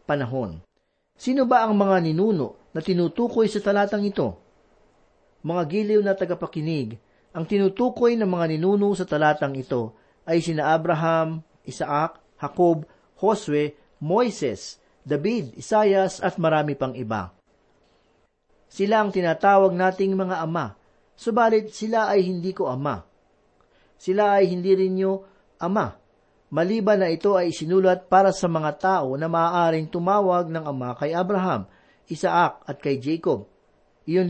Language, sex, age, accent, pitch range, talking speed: Filipino, male, 40-59, native, 155-200 Hz, 130 wpm